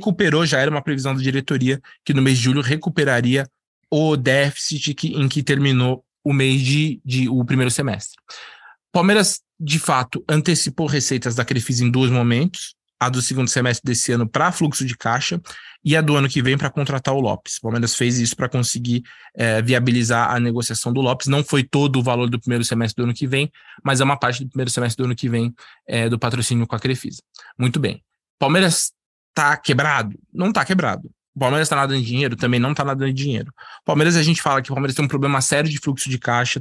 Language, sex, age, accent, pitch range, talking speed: Portuguese, male, 20-39, Brazilian, 125-150 Hz, 215 wpm